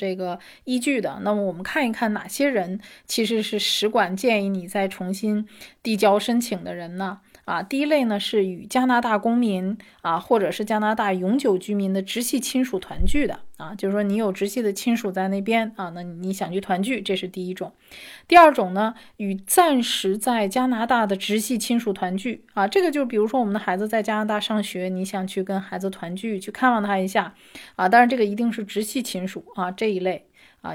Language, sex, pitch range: Chinese, female, 190-225 Hz